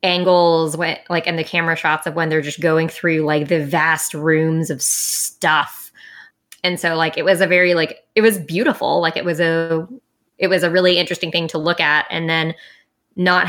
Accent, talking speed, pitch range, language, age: American, 205 wpm, 155-175 Hz, English, 20-39